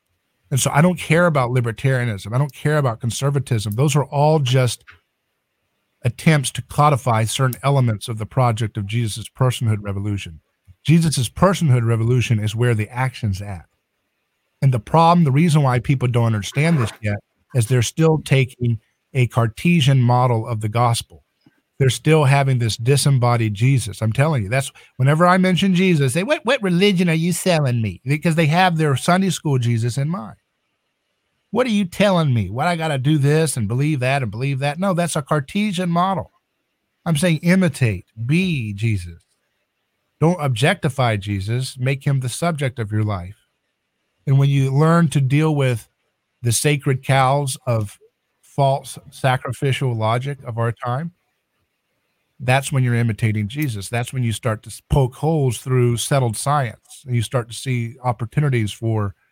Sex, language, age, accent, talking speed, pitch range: male, English, 50-69, American, 165 wpm, 115-150 Hz